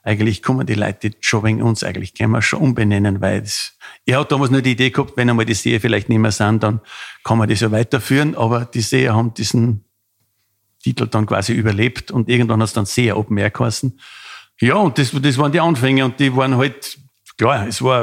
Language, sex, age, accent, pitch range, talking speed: German, male, 50-69, Austrian, 110-140 Hz, 215 wpm